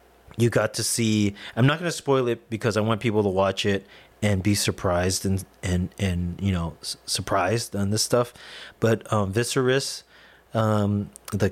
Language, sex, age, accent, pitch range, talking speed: English, male, 30-49, American, 100-120 Hz, 180 wpm